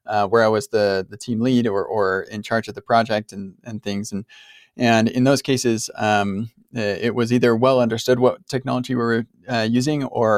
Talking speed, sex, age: 210 wpm, male, 20-39